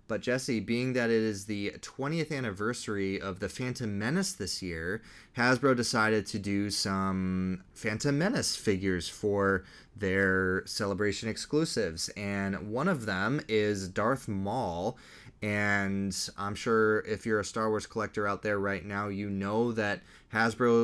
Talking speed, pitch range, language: 145 wpm, 95-115 Hz, English